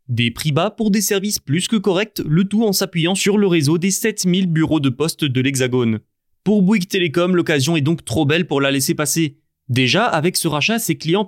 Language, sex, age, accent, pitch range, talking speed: French, male, 30-49, French, 140-195 Hz, 220 wpm